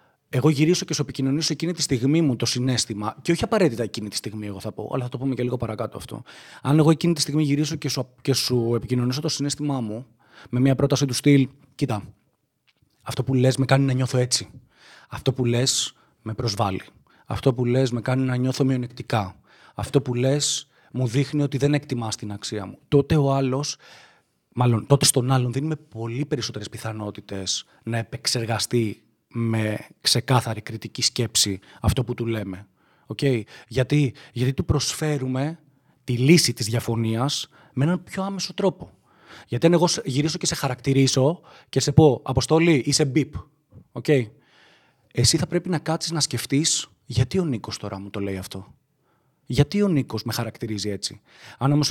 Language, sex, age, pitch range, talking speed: Greek, male, 20-39, 115-145 Hz, 175 wpm